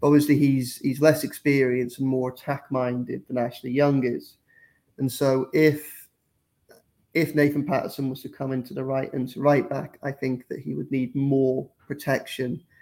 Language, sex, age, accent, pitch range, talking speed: English, male, 30-49, British, 130-145 Hz, 170 wpm